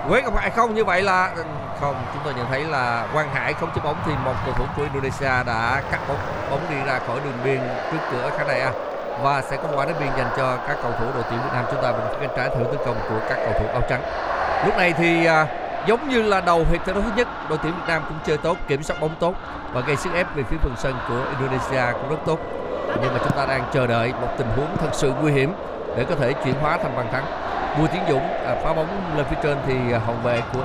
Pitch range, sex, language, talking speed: 135-195 Hz, male, Vietnamese, 270 wpm